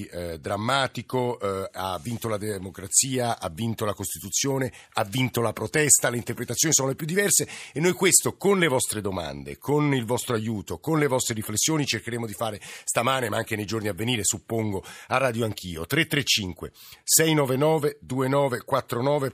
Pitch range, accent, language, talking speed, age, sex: 110-135 Hz, native, Italian, 160 wpm, 50-69, male